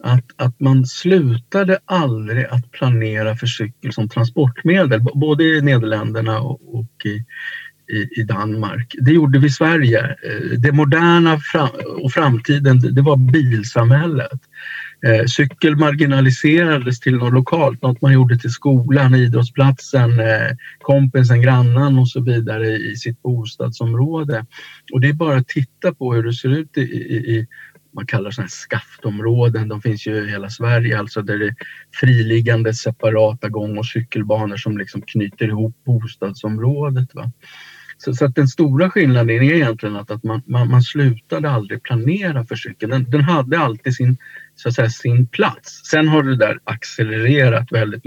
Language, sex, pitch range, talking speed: Swedish, male, 110-135 Hz, 150 wpm